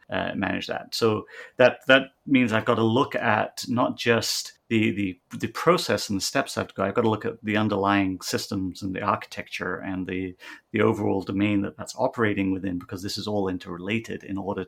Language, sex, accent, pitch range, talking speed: English, male, British, 95-110 Hz, 215 wpm